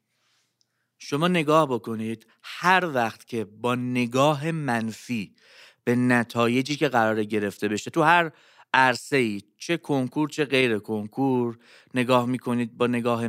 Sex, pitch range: male, 115-160 Hz